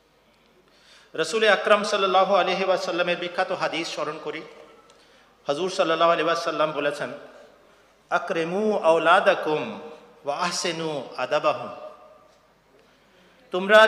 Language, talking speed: Bengali, 50 wpm